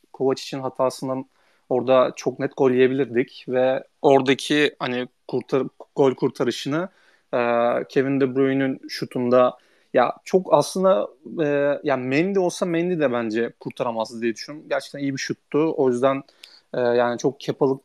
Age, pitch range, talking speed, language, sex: 30-49, 125-150 Hz, 140 wpm, Turkish, male